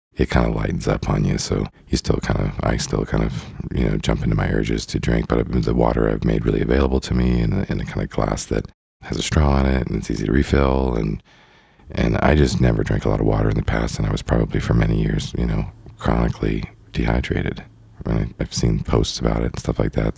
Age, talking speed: 40-59, 250 wpm